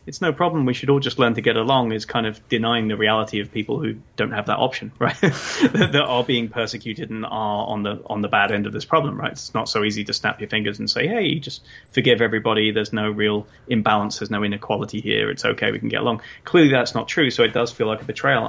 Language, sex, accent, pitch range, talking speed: English, male, British, 105-125 Hz, 260 wpm